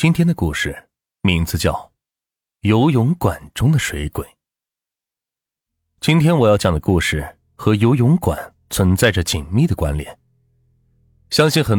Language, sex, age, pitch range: Chinese, male, 30-49, 80-125 Hz